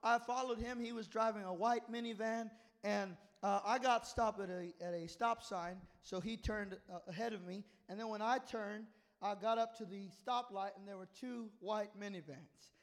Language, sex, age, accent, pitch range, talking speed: English, male, 20-39, American, 200-265 Hz, 205 wpm